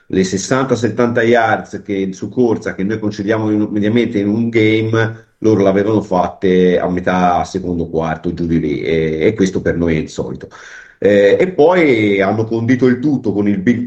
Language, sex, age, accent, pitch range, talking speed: Italian, male, 40-59, native, 95-120 Hz, 185 wpm